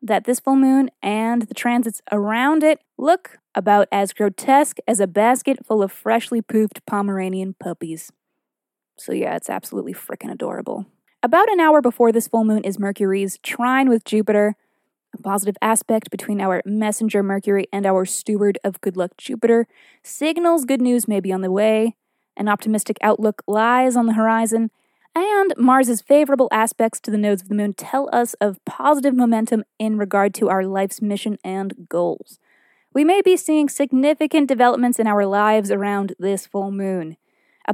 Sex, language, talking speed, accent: female, English, 170 wpm, American